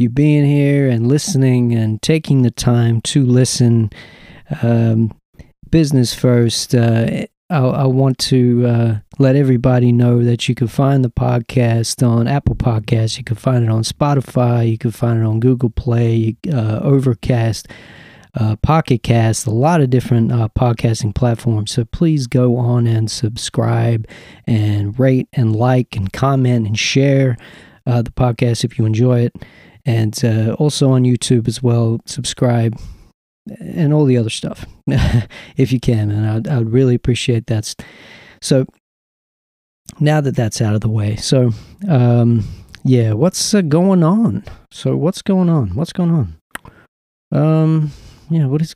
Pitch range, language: 115-130 Hz, English